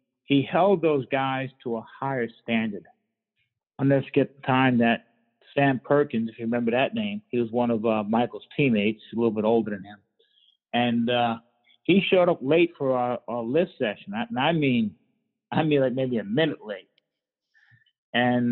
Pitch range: 115-140 Hz